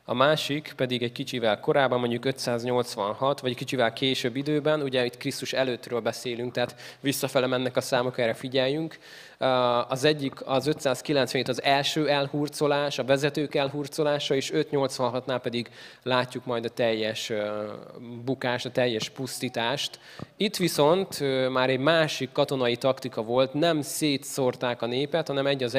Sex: male